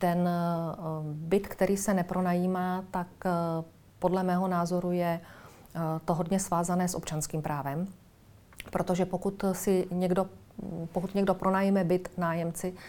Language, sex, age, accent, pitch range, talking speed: Czech, female, 40-59, native, 170-185 Hz, 115 wpm